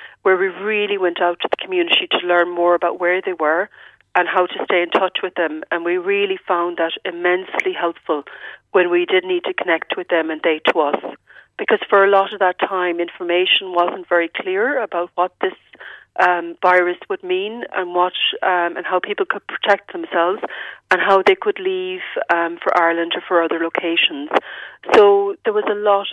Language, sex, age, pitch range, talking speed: English, female, 40-59, 175-205 Hz, 195 wpm